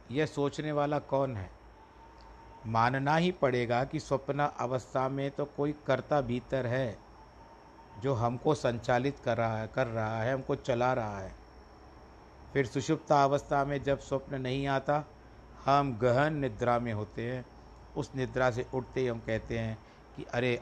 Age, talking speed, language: 60-79, 155 wpm, Hindi